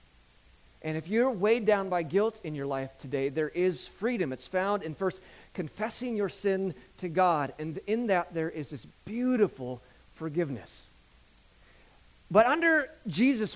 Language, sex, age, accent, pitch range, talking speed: English, male, 30-49, American, 160-225 Hz, 150 wpm